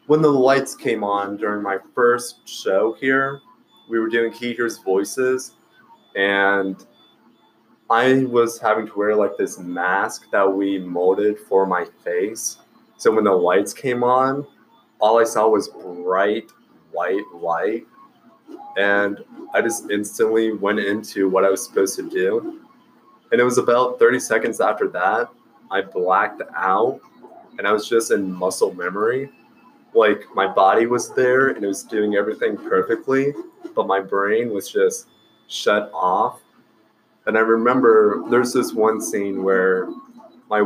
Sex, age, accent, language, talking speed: male, 20-39, American, English, 150 wpm